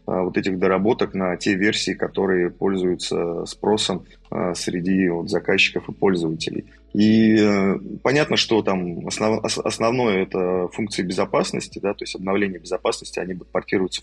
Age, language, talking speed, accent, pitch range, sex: 20-39, Russian, 120 wpm, native, 95-105 Hz, male